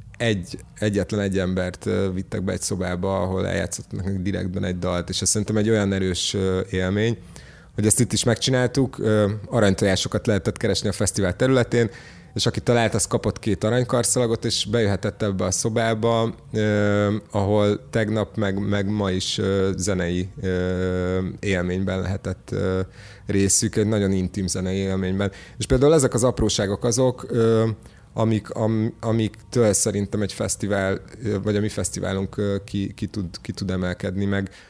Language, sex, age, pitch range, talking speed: Hungarian, male, 30-49, 95-110 Hz, 140 wpm